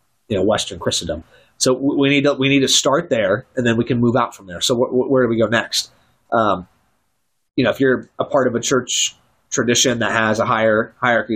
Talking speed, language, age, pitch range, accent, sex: 240 wpm, English, 30-49, 115-145 Hz, American, male